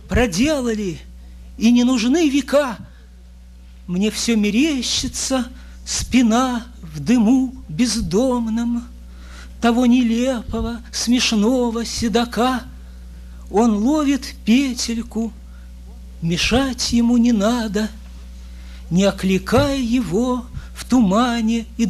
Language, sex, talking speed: English, male, 80 wpm